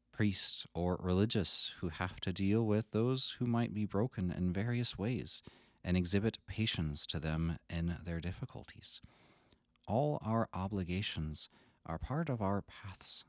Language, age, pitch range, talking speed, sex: English, 30-49, 90-115 Hz, 145 wpm, male